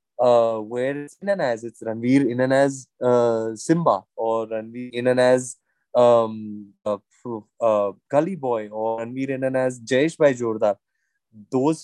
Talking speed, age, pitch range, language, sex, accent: 160 wpm, 20-39, 120-150 Hz, English, male, Indian